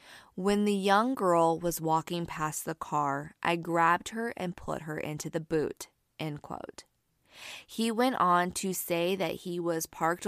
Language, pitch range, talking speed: English, 160-190 Hz, 170 wpm